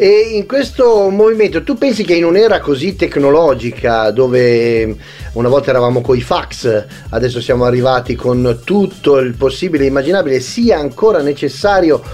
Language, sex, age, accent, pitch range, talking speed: Italian, male, 30-49, native, 145-185 Hz, 140 wpm